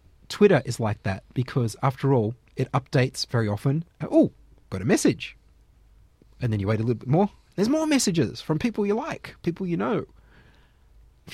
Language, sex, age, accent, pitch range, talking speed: English, male, 30-49, Australian, 110-140 Hz, 180 wpm